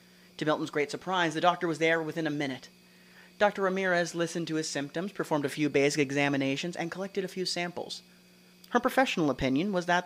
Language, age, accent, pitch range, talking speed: English, 30-49, American, 130-175 Hz, 190 wpm